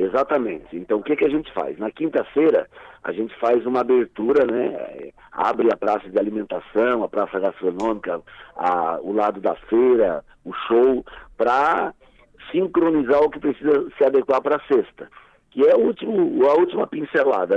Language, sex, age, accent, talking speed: Portuguese, male, 50-69, Brazilian, 165 wpm